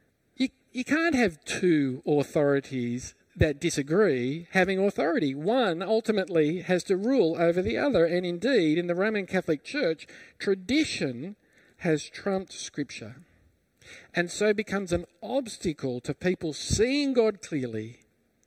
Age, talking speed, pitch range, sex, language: 50-69, 125 wpm, 125-180 Hz, male, English